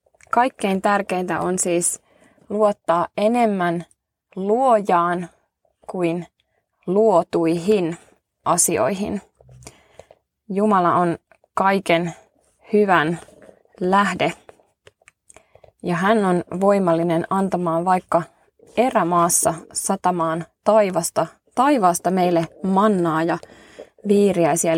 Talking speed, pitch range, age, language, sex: 70 wpm, 175-210 Hz, 20-39, Finnish, female